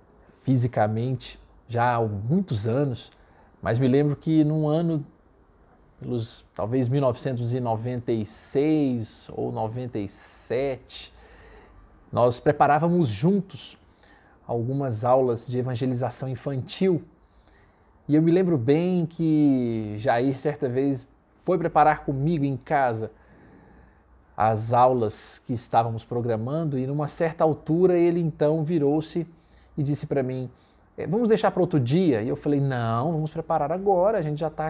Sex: male